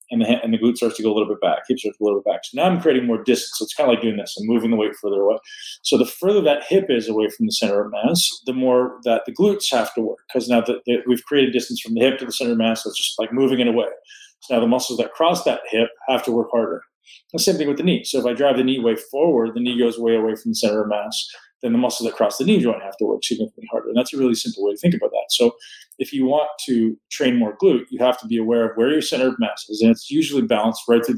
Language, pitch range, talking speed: English, 115-150 Hz, 310 wpm